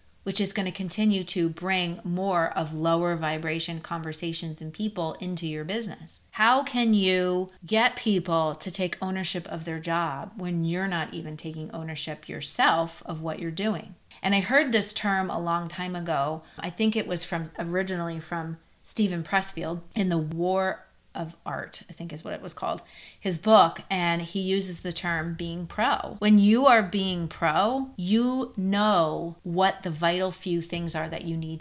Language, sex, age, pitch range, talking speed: English, female, 30-49, 165-195 Hz, 180 wpm